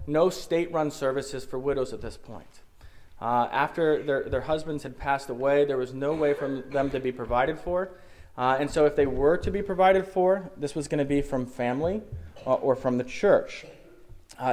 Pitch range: 120-150 Hz